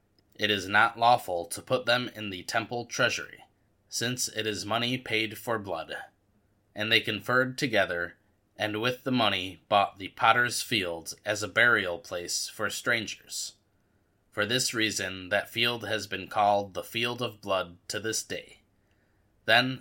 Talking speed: 160 wpm